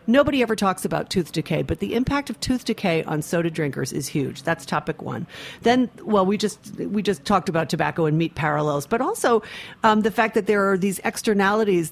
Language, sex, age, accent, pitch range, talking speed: English, female, 40-59, American, 160-215 Hz, 210 wpm